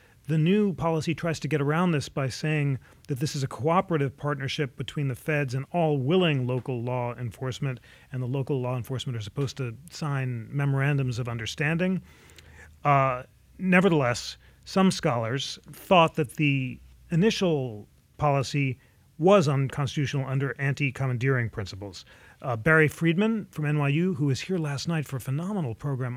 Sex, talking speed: male, 150 wpm